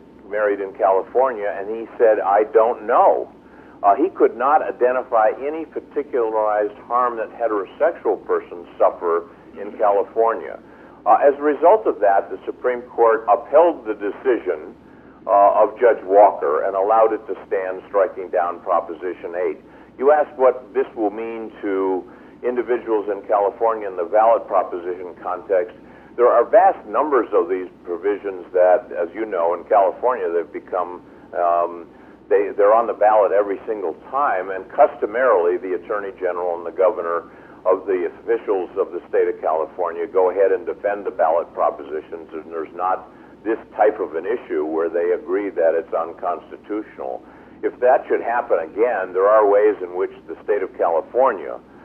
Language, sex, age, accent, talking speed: English, male, 50-69, American, 160 wpm